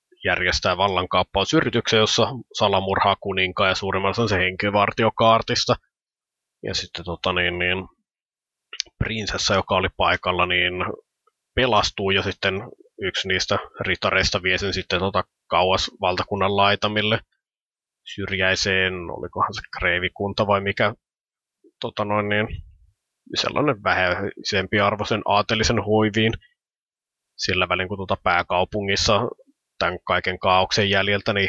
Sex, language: male, Finnish